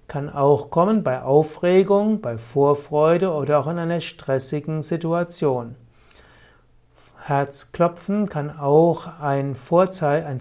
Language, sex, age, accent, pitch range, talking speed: German, male, 60-79, German, 140-175 Hz, 105 wpm